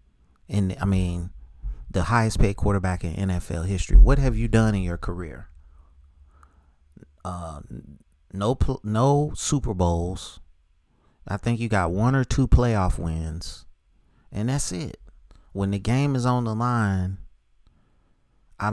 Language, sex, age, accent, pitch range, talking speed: English, male, 30-49, American, 75-100 Hz, 135 wpm